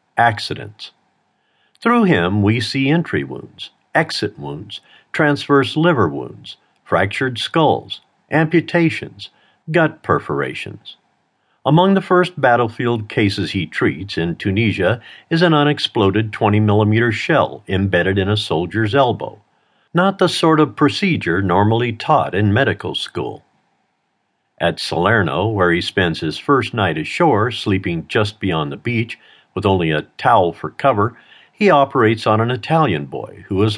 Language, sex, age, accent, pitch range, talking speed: English, male, 50-69, American, 100-140 Hz, 135 wpm